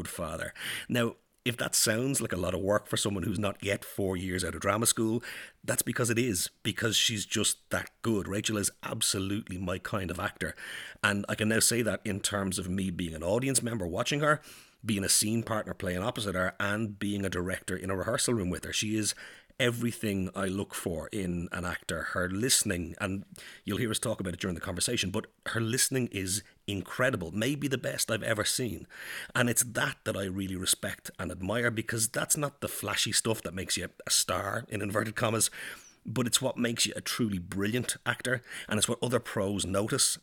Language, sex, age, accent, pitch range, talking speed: English, male, 30-49, Irish, 95-120 Hz, 210 wpm